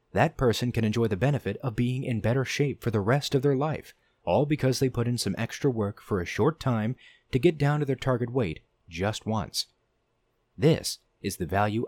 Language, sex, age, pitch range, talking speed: English, male, 30-49, 105-130 Hz, 210 wpm